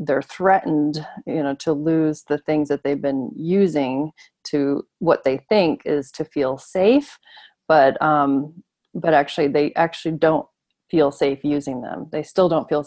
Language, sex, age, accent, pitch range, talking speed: English, female, 30-49, American, 145-170 Hz, 165 wpm